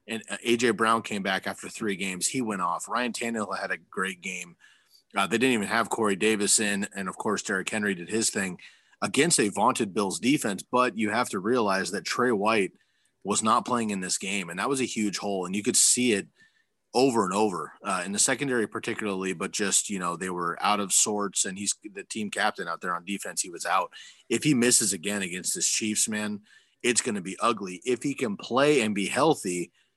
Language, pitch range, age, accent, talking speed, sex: English, 95-115 Hz, 30-49, American, 225 wpm, male